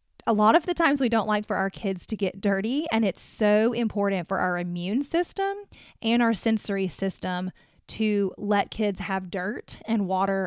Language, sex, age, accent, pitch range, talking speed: English, female, 20-39, American, 190-220 Hz, 190 wpm